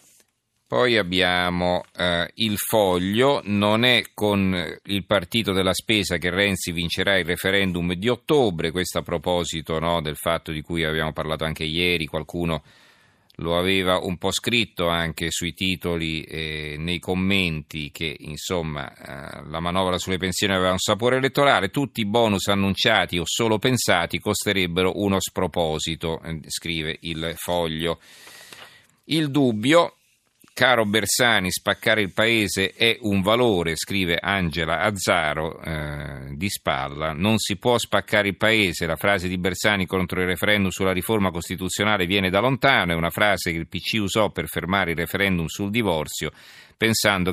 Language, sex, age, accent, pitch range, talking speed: Italian, male, 40-59, native, 85-105 Hz, 150 wpm